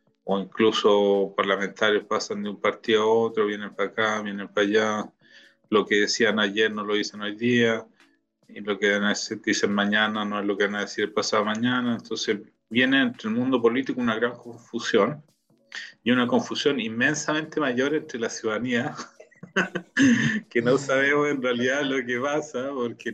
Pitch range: 105-135 Hz